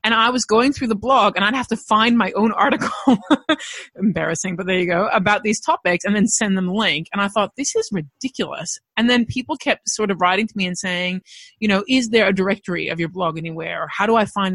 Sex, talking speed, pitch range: female, 250 wpm, 180-225 Hz